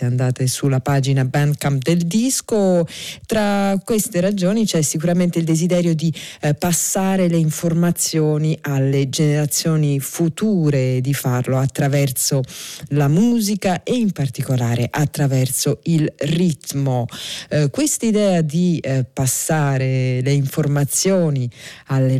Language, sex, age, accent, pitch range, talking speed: Italian, female, 40-59, native, 135-175 Hz, 110 wpm